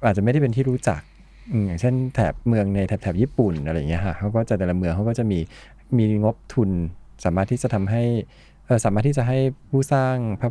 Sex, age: male, 20-39